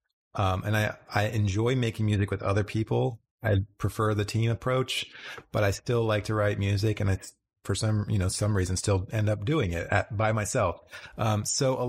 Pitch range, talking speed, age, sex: 100-130 Hz, 205 wpm, 30-49, male